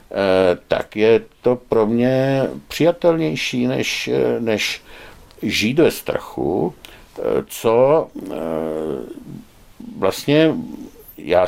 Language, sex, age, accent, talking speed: Czech, male, 60-79, native, 75 wpm